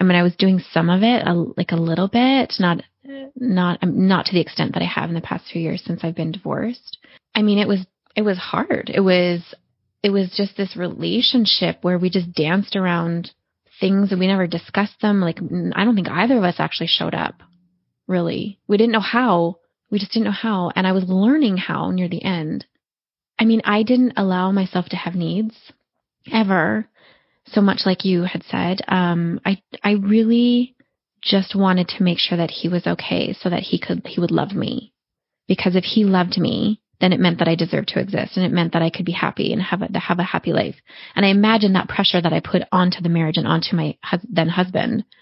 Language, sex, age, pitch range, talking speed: English, female, 20-39, 175-210 Hz, 220 wpm